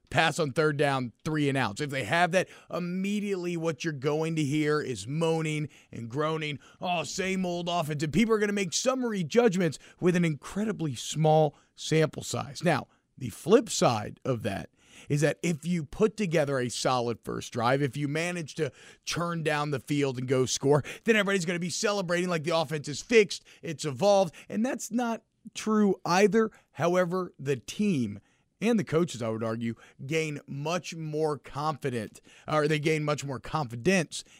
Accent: American